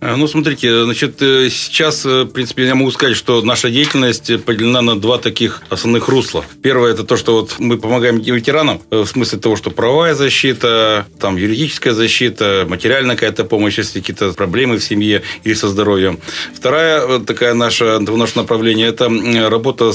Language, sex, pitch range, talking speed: Russian, male, 110-130 Hz, 160 wpm